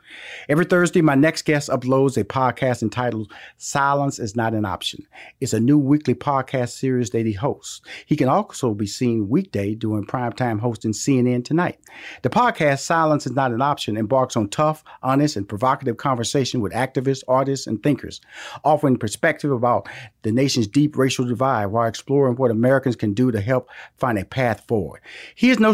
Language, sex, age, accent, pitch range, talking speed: English, male, 40-59, American, 120-150 Hz, 175 wpm